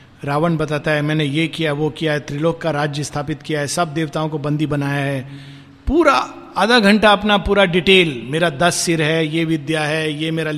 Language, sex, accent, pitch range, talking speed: Hindi, male, native, 140-175 Hz, 205 wpm